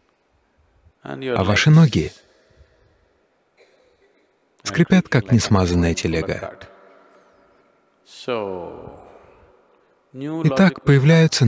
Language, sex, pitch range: Russian, male, 95-155 Hz